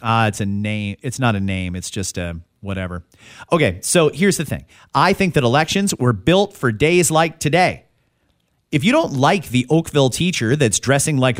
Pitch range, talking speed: 115-180 Hz, 195 wpm